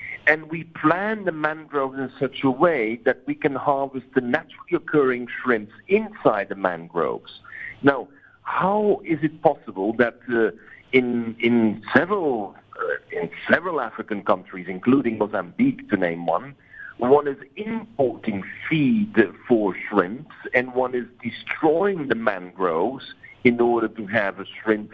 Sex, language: male, English